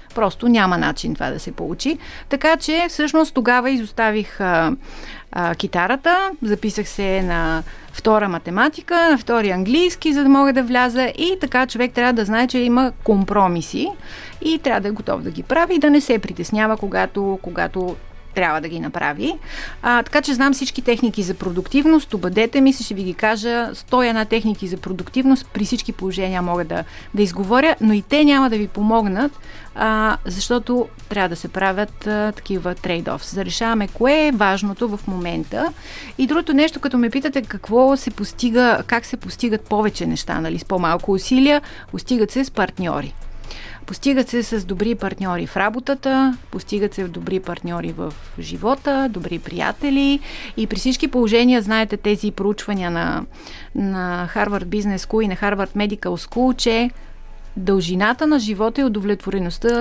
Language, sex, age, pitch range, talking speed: Bulgarian, female, 30-49, 195-260 Hz, 165 wpm